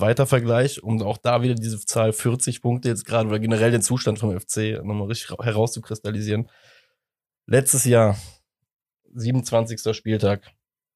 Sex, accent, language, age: male, German, German, 20-39